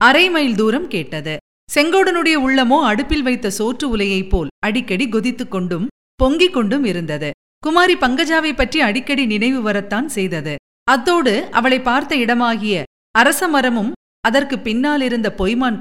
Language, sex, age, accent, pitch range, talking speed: Tamil, female, 50-69, native, 205-285 Hz, 115 wpm